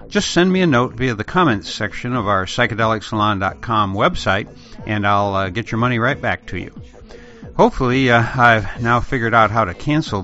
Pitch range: 100-135 Hz